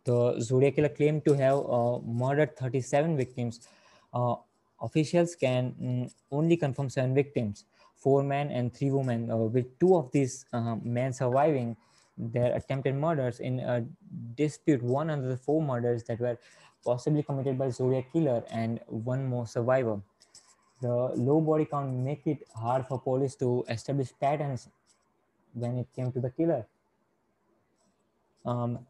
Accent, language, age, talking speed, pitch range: Indian, English, 20-39, 145 wpm, 120-145 Hz